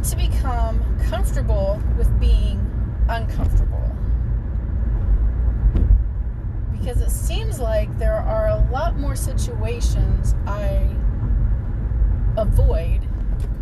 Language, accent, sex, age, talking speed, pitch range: English, American, female, 30-49, 80 wpm, 80-95 Hz